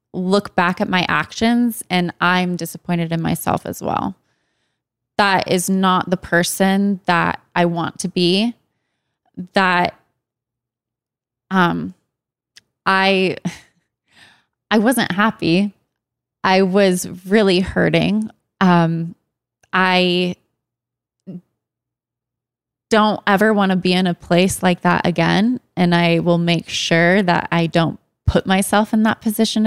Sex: female